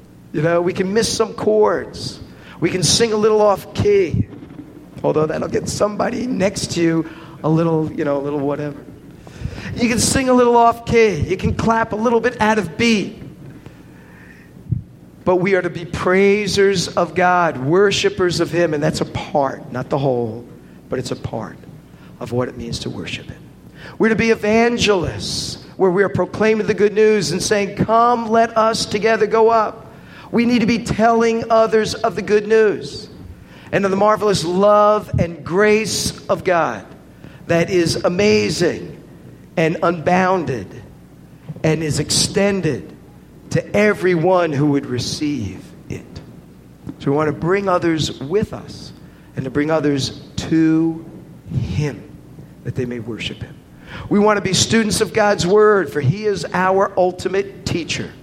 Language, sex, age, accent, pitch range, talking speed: English, male, 50-69, American, 150-215 Hz, 160 wpm